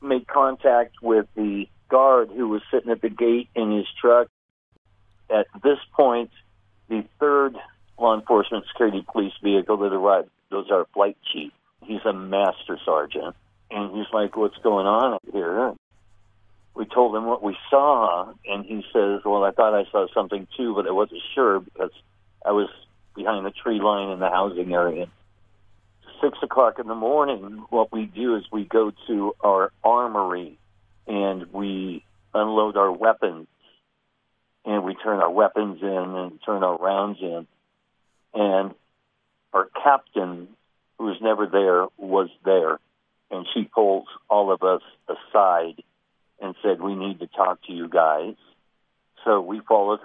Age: 50-69